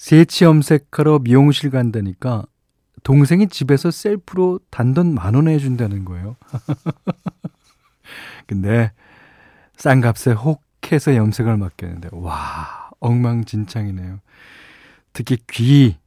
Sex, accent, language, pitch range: male, native, Korean, 110-145 Hz